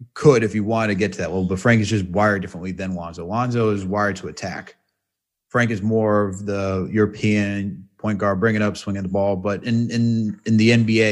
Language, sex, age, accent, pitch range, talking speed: English, male, 30-49, American, 100-130 Hz, 220 wpm